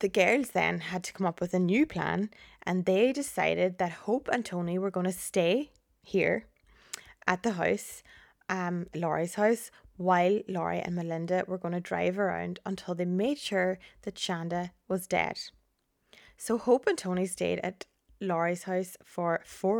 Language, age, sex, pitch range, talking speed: English, 20-39, female, 175-200 Hz, 170 wpm